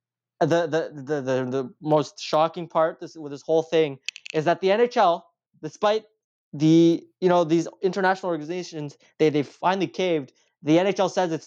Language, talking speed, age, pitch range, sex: English, 165 wpm, 20-39, 155-195 Hz, male